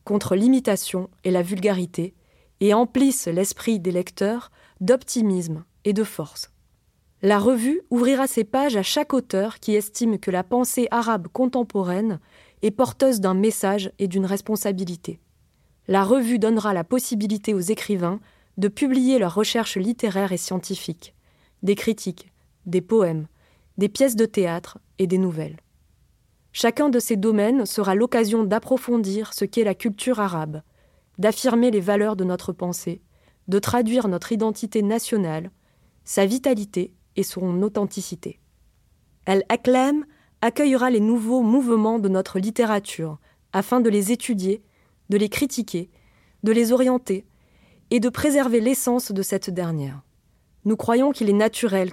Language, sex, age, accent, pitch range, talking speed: French, female, 20-39, French, 190-235 Hz, 140 wpm